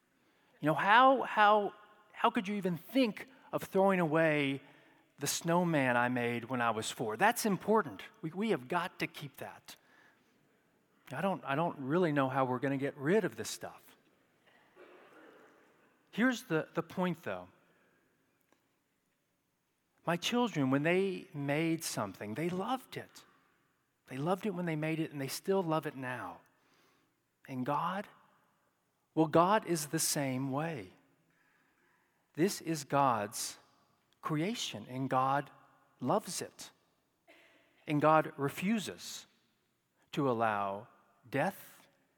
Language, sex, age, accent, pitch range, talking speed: English, male, 40-59, American, 130-175 Hz, 130 wpm